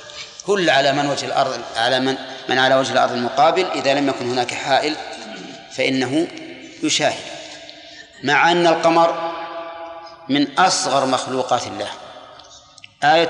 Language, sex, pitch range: Arabic, male, 130-165 Hz